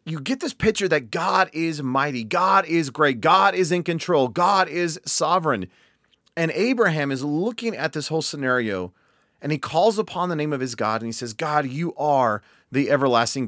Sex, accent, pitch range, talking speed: male, American, 130-170 Hz, 190 wpm